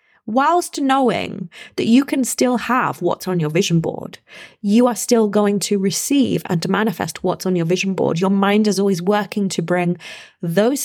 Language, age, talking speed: English, 20-39, 190 wpm